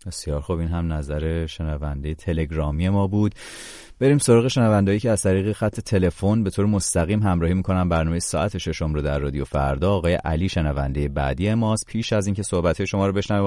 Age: 30-49